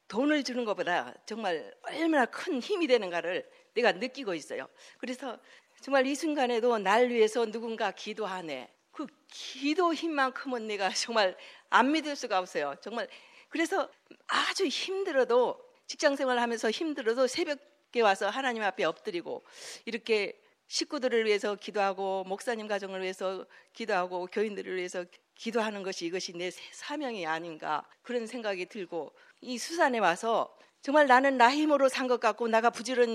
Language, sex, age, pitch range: Korean, female, 50-69, 205-295 Hz